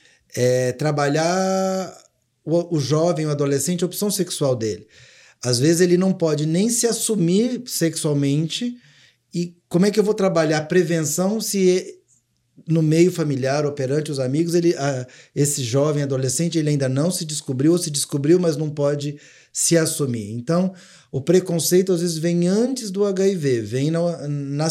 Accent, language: Brazilian, Portuguese